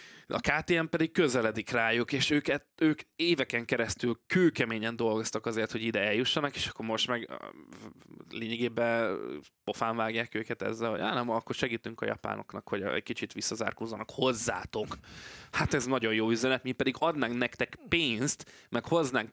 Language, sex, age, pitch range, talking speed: Hungarian, male, 20-39, 110-130 Hz, 150 wpm